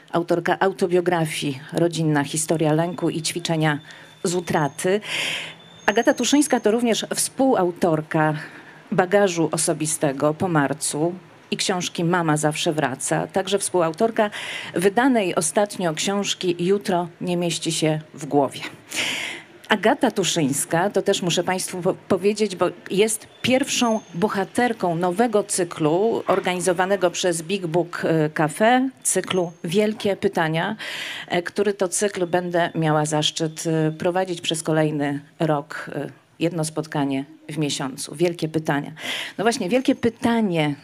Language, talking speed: Polish, 110 wpm